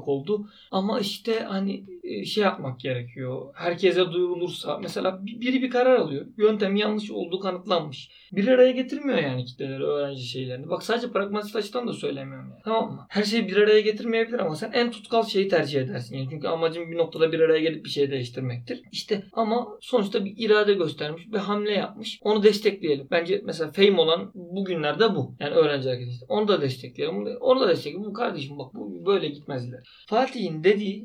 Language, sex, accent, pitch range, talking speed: Turkish, male, native, 155-210 Hz, 175 wpm